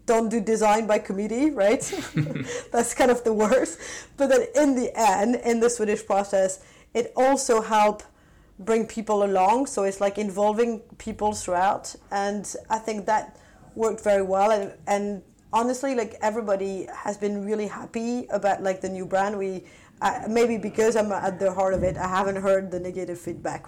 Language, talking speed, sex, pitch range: English, 175 wpm, female, 195-230 Hz